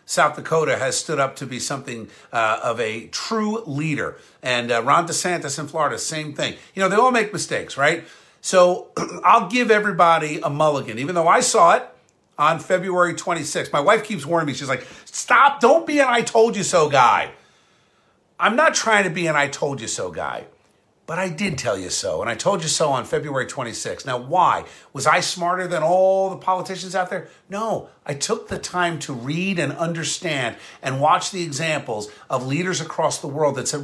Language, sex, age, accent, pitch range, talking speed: English, male, 50-69, American, 155-210 Hz, 200 wpm